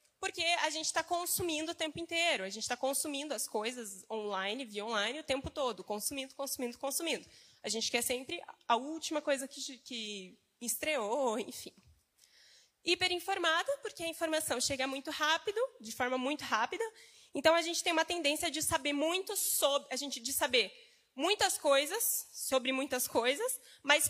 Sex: female